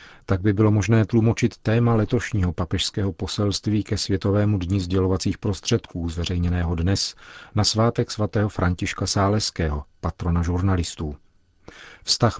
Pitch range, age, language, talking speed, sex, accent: 90-110 Hz, 40-59, Czech, 115 wpm, male, native